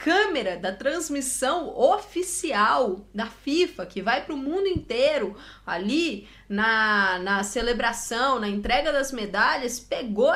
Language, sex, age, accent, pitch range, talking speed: Portuguese, female, 20-39, Brazilian, 220-275 Hz, 120 wpm